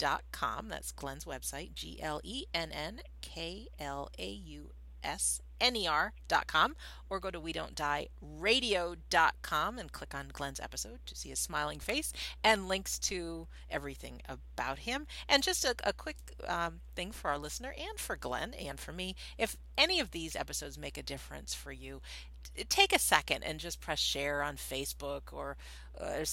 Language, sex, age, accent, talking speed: English, female, 40-59, American, 145 wpm